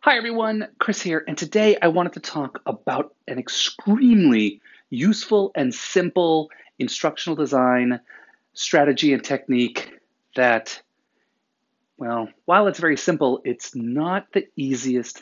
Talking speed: 120 wpm